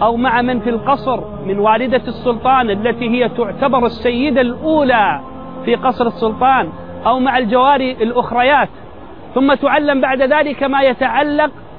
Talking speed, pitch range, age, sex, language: 130 wpm, 240-285 Hz, 40-59, male, Arabic